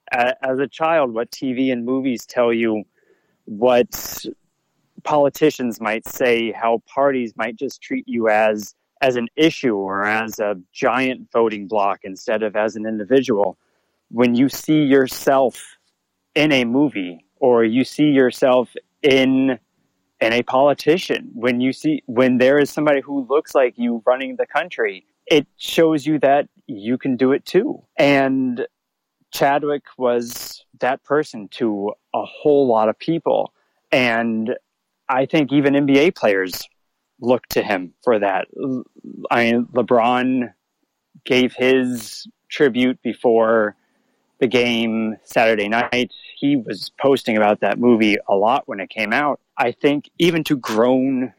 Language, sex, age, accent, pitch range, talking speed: English, male, 30-49, American, 115-140 Hz, 140 wpm